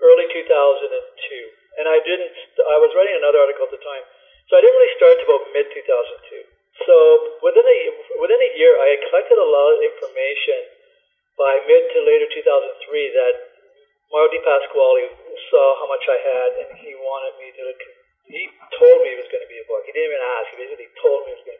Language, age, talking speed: German, 50-69, 205 wpm